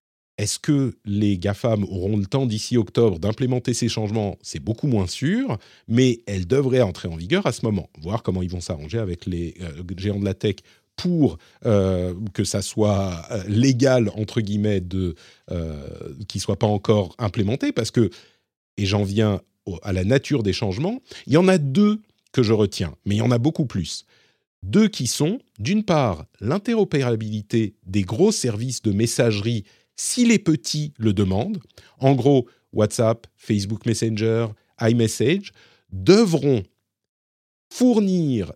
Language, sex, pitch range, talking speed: French, male, 100-140 Hz, 155 wpm